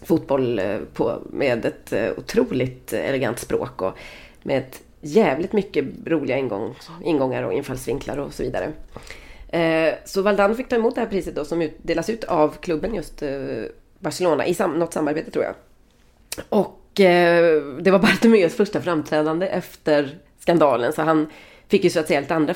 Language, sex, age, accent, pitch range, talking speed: Swedish, female, 30-49, native, 150-205 Hz, 155 wpm